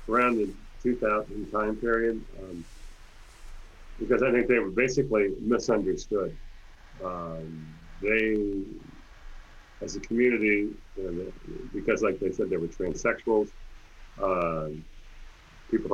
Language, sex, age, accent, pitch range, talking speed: English, male, 40-59, American, 80-105 Hz, 110 wpm